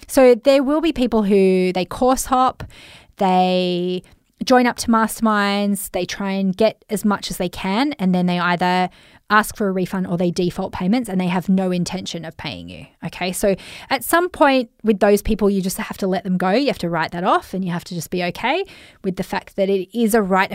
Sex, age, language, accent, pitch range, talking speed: female, 20-39, English, Australian, 185-230 Hz, 230 wpm